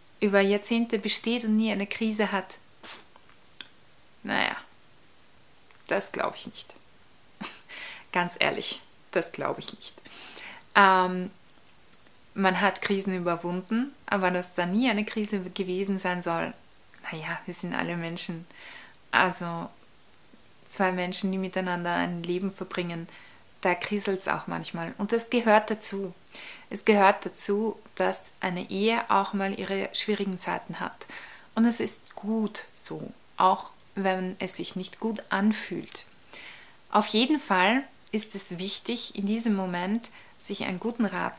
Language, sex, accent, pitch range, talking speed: German, female, German, 185-215 Hz, 135 wpm